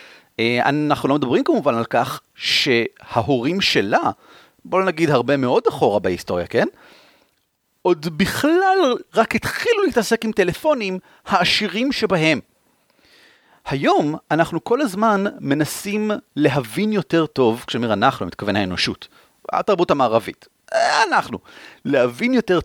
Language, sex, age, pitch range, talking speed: Hebrew, male, 40-59, 135-205 Hz, 110 wpm